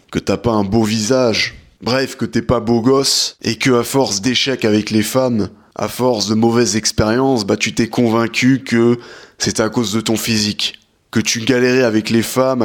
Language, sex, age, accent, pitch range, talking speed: French, male, 20-39, French, 110-130 Hz, 200 wpm